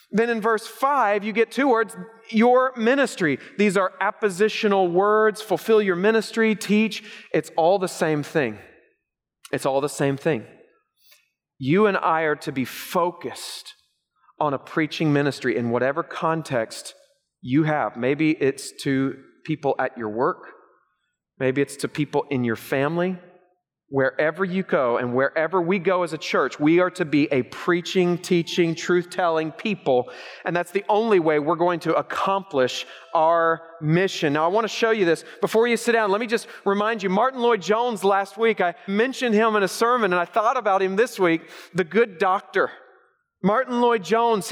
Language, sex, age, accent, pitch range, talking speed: English, male, 30-49, American, 165-225 Hz, 170 wpm